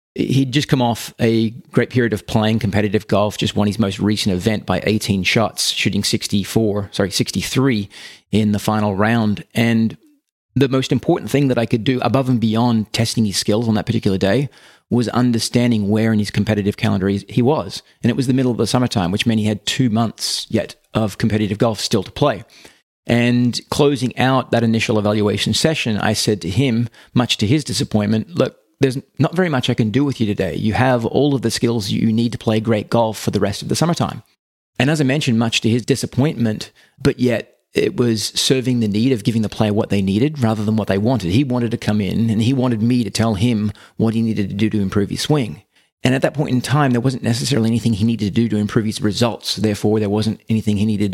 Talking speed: 225 wpm